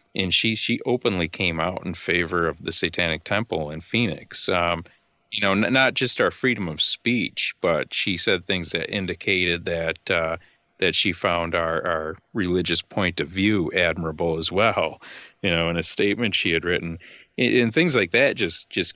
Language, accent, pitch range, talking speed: English, American, 85-100 Hz, 185 wpm